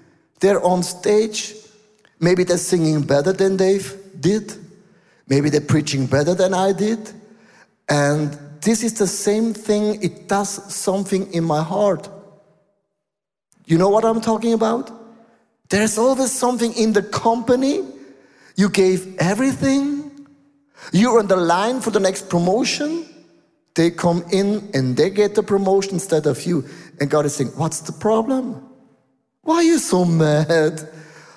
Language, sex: English, male